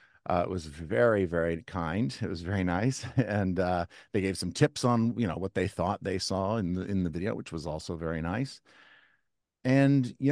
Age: 50-69